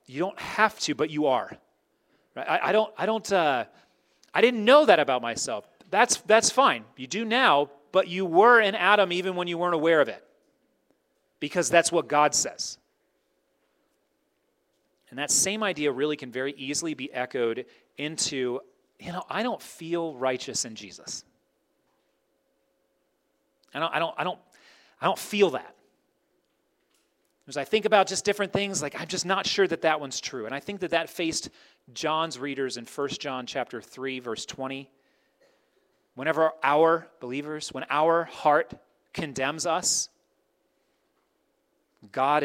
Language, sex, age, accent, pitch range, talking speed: English, male, 30-49, American, 135-190 Hz, 155 wpm